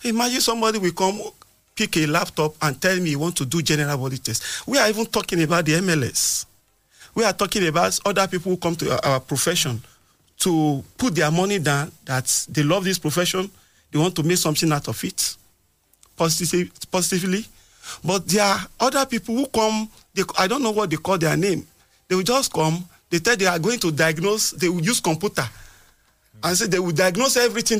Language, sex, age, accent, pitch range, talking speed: English, male, 40-59, Nigerian, 135-200 Hz, 195 wpm